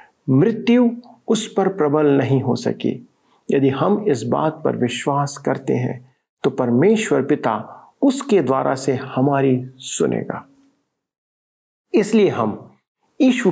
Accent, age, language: native, 50-69, Hindi